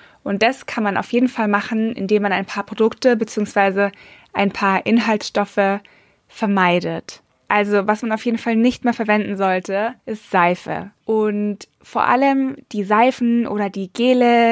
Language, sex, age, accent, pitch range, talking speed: German, female, 20-39, German, 205-230 Hz, 155 wpm